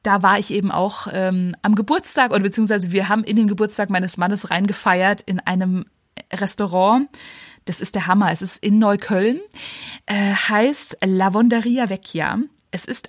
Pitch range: 195-240 Hz